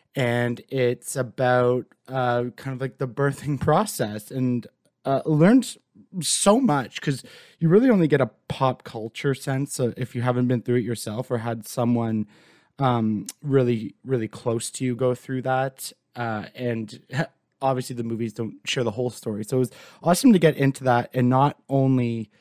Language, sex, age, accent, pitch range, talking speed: English, male, 20-39, American, 115-140 Hz, 170 wpm